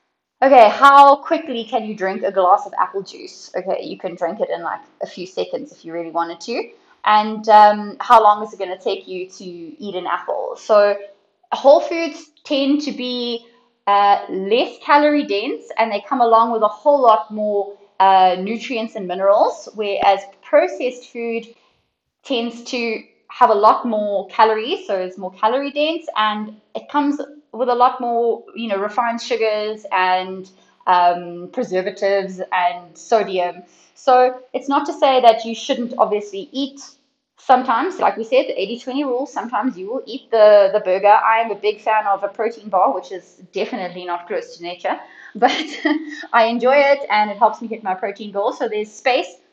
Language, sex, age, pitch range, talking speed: English, female, 20-39, 200-275 Hz, 180 wpm